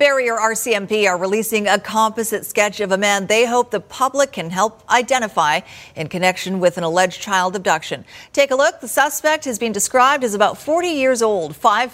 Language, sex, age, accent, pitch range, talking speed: English, female, 40-59, American, 185-240 Hz, 190 wpm